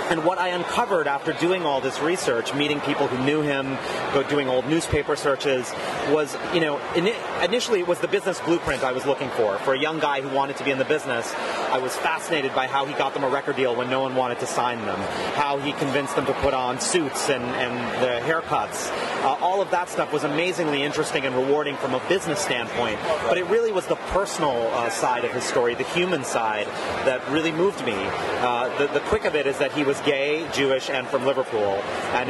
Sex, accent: male, American